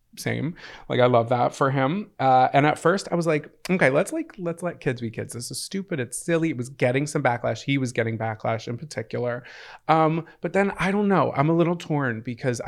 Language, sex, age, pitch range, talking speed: English, male, 30-49, 110-140 Hz, 230 wpm